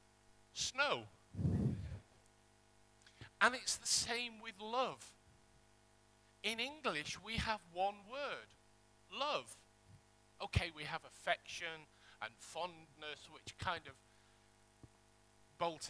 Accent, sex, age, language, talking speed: British, male, 50-69, English, 90 wpm